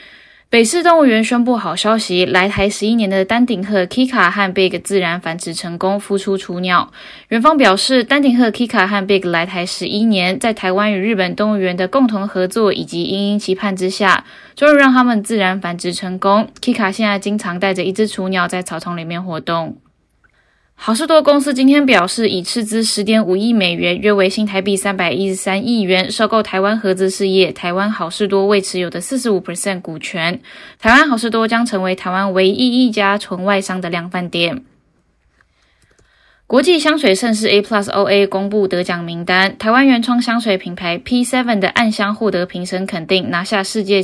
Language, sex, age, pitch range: Chinese, female, 10-29, 185-225 Hz